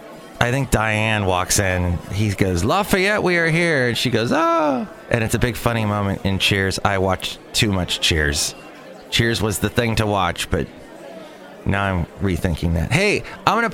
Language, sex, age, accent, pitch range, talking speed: English, male, 30-49, American, 100-135 Hz, 190 wpm